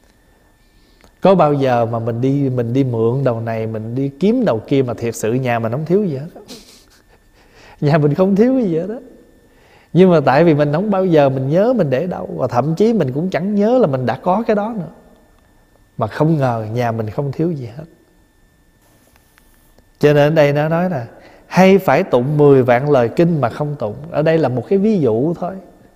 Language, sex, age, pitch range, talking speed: Vietnamese, male, 20-39, 130-185 Hz, 215 wpm